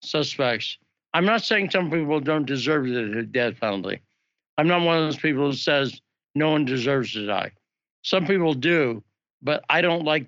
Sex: male